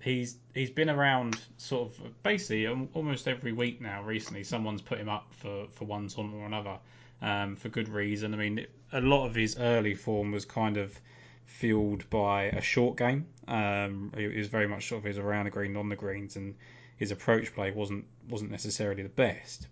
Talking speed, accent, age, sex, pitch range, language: 205 wpm, British, 20-39, male, 105-120 Hz, English